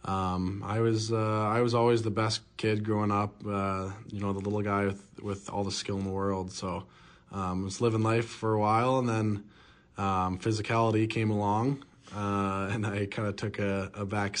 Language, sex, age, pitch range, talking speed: English, male, 20-39, 95-110 Hz, 210 wpm